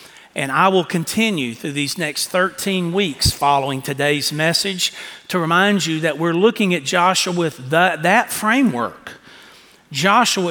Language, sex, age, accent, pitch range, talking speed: English, male, 40-59, American, 150-200 Hz, 145 wpm